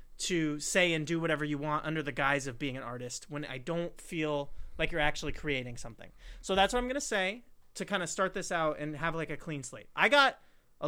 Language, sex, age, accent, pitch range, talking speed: English, male, 30-49, American, 145-180 Hz, 250 wpm